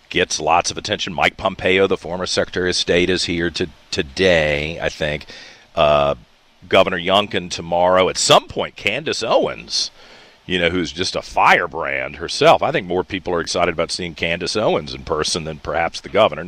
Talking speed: 180 wpm